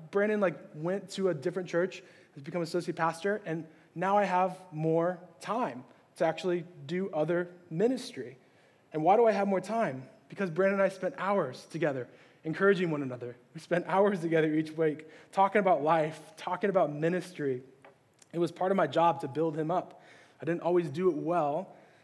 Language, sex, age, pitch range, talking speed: English, male, 20-39, 150-185 Hz, 180 wpm